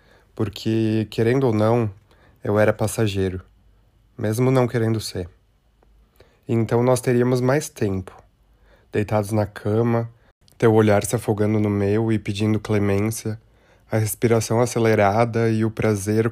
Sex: male